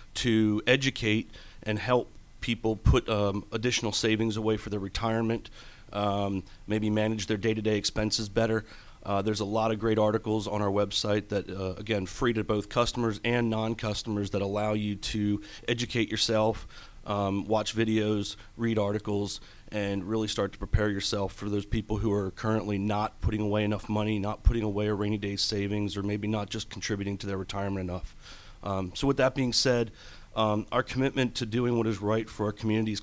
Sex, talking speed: male, 180 wpm